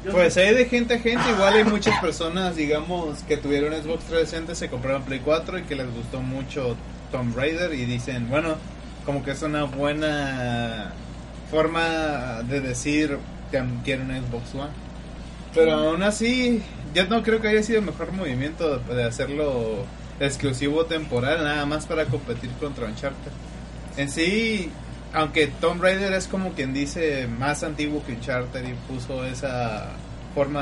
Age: 30-49